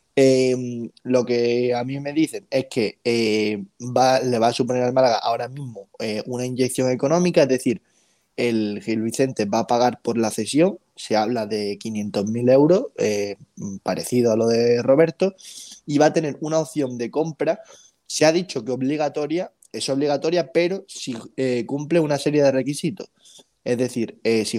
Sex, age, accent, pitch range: male, 20-39, Spanish, 110-140 Hz